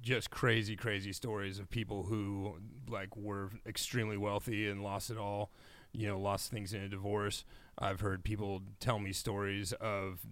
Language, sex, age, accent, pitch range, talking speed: English, male, 30-49, American, 100-120 Hz, 170 wpm